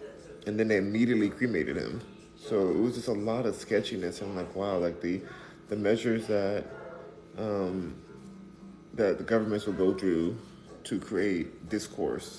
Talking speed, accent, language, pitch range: 160 wpm, American, English, 95-115 Hz